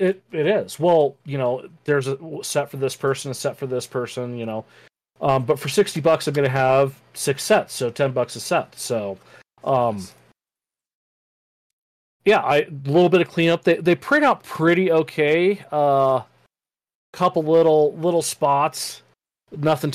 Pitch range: 125-160 Hz